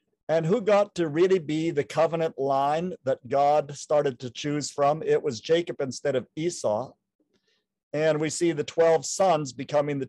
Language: English